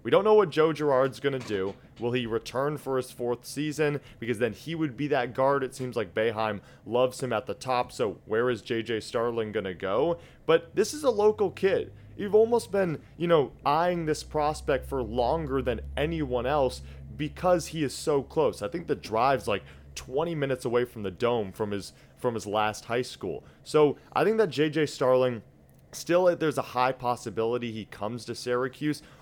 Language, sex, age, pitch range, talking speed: English, male, 20-39, 115-150 Hz, 200 wpm